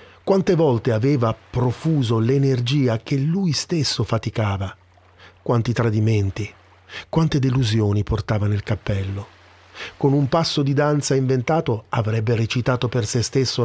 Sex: male